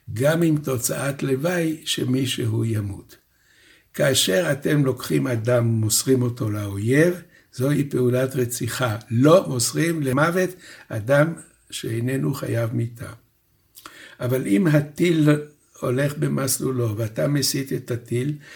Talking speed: 105 wpm